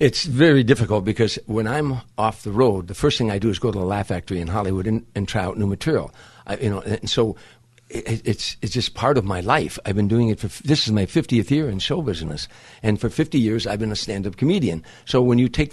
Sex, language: male, English